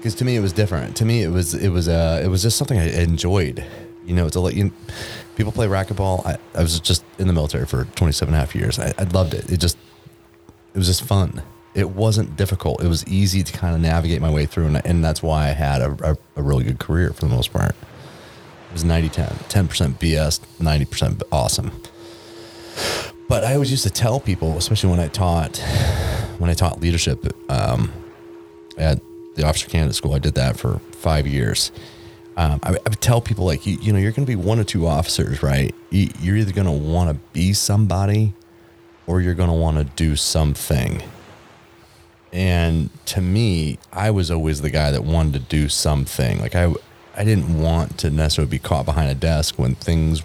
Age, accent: 30-49, American